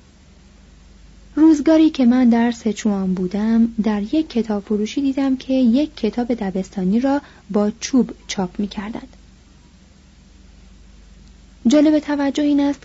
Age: 30-49